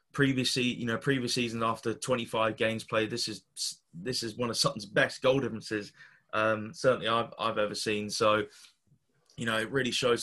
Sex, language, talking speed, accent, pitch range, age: male, English, 180 wpm, British, 115-135 Hz, 20-39